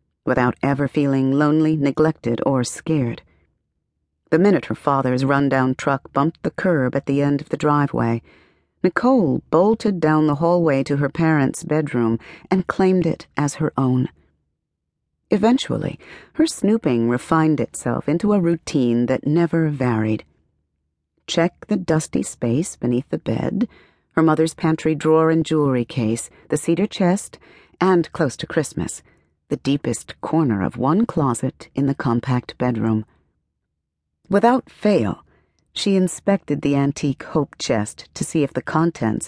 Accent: American